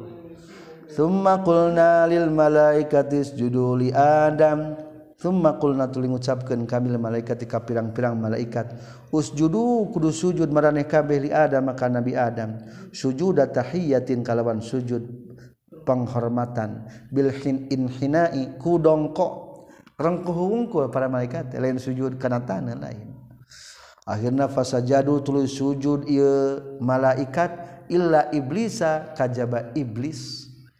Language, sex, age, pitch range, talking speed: Indonesian, male, 50-69, 125-160 Hz, 95 wpm